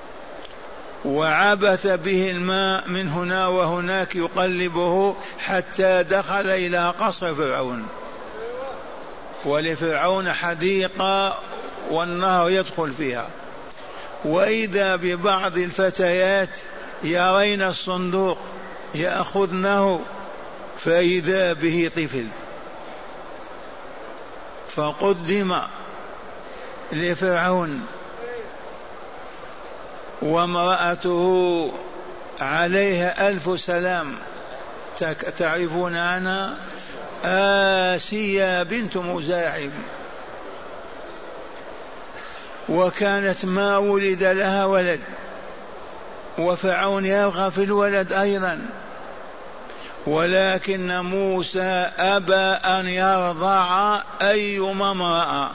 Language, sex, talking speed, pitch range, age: Arabic, male, 60 wpm, 175-195 Hz, 50-69